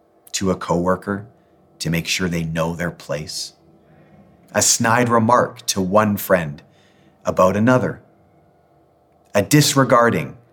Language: English